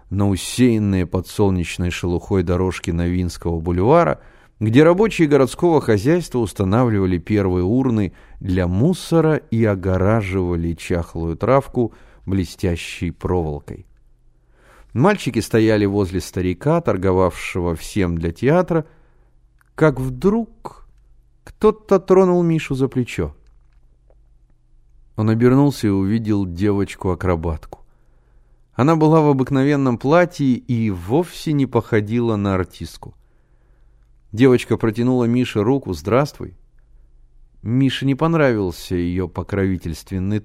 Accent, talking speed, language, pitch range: native, 95 wpm, Russian, 95-135 Hz